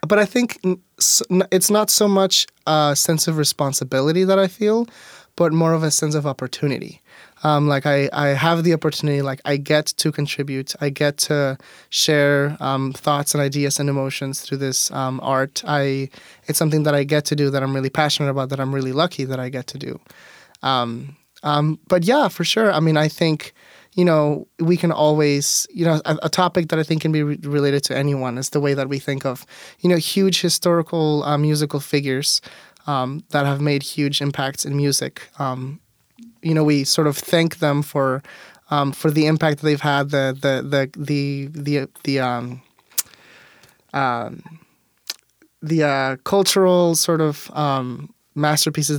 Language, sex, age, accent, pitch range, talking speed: English, male, 20-39, American, 140-165 Hz, 185 wpm